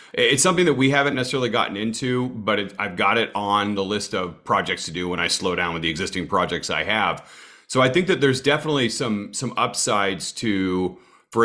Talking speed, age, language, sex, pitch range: 215 wpm, 40-59, English, male, 95-115 Hz